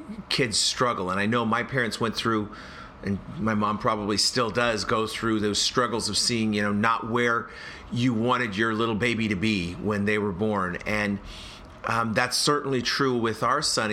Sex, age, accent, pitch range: male, 40-59, American, 100-125 Hz